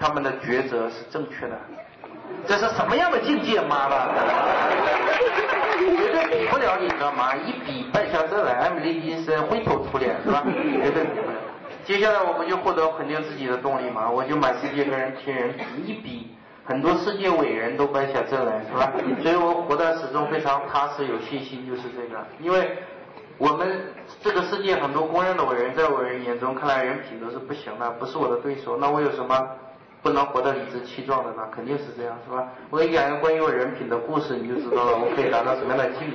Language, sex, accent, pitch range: Chinese, male, native, 135-175 Hz